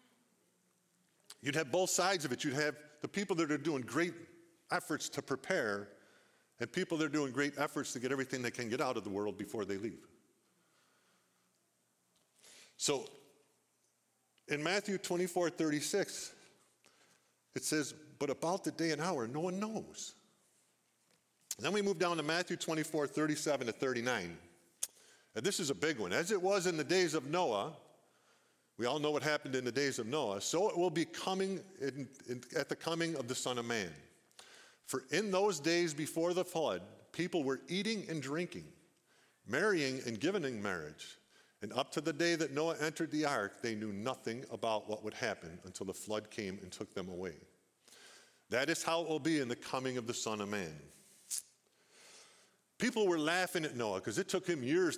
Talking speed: 180 wpm